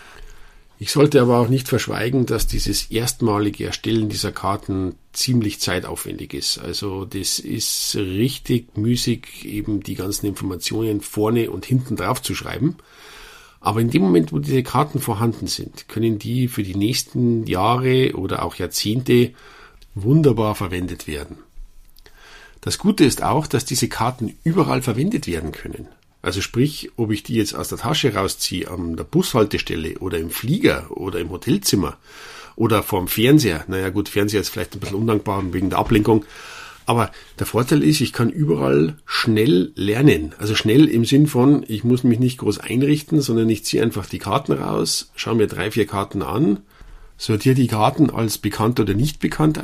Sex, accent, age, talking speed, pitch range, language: male, German, 50-69, 165 wpm, 100-130 Hz, German